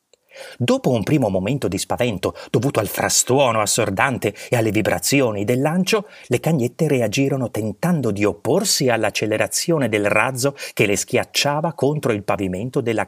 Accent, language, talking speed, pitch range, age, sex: native, Italian, 140 wpm, 115-170 Hz, 30-49, male